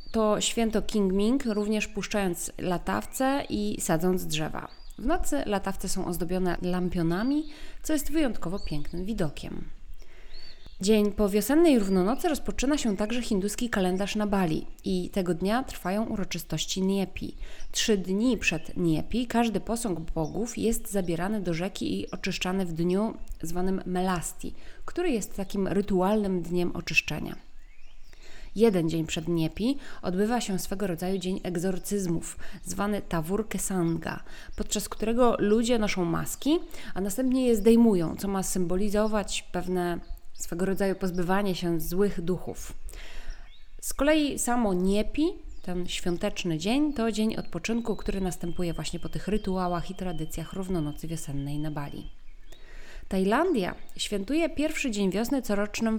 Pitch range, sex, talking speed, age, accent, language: 180-225 Hz, female, 130 wpm, 20-39, native, Polish